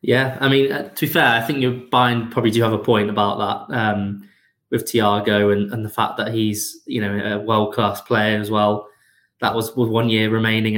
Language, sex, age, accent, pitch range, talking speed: English, male, 20-39, British, 105-115 Hz, 215 wpm